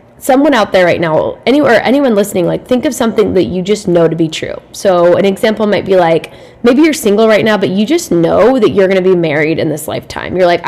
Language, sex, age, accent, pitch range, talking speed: English, female, 10-29, American, 175-220 Hz, 245 wpm